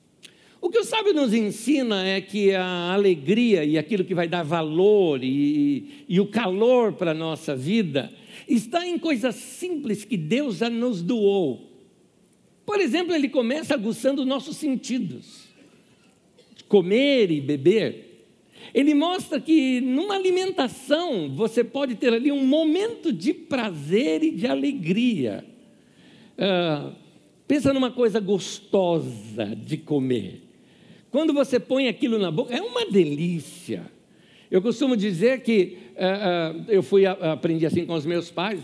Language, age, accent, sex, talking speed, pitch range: Portuguese, 60-79, Brazilian, male, 140 wpm, 175-265 Hz